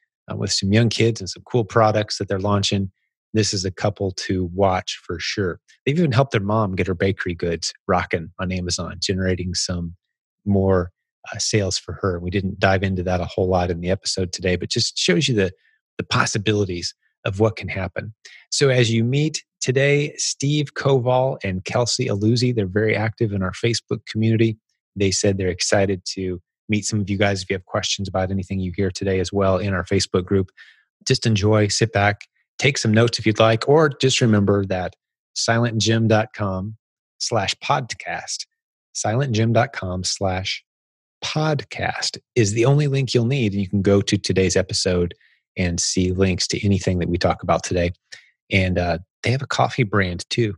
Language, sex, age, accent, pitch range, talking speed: English, male, 30-49, American, 95-115 Hz, 185 wpm